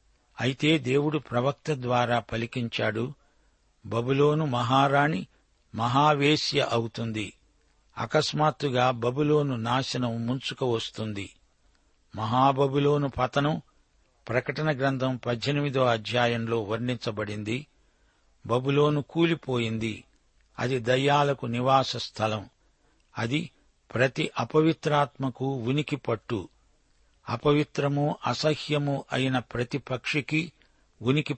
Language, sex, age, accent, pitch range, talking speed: Telugu, male, 60-79, native, 115-145 Hz, 70 wpm